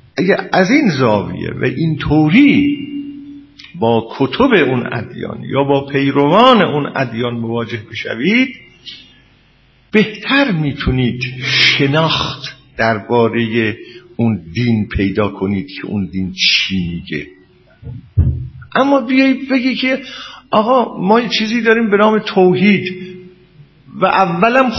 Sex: male